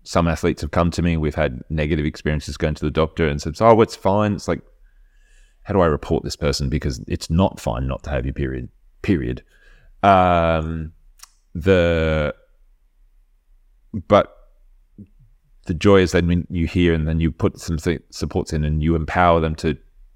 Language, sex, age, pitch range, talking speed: English, male, 30-49, 75-90 Hz, 175 wpm